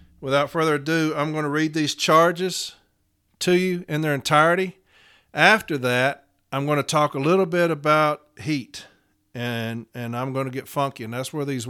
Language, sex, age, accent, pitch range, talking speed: English, male, 50-69, American, 125-160 Hz, 185 wpm